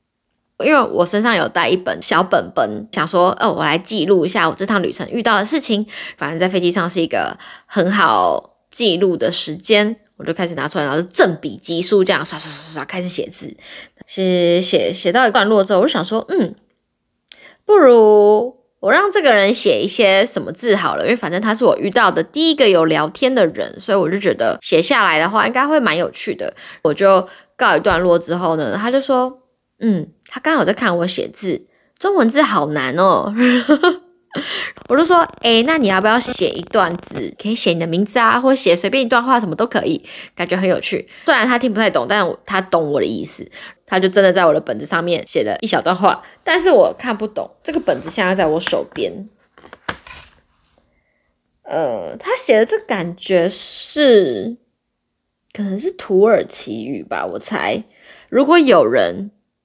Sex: female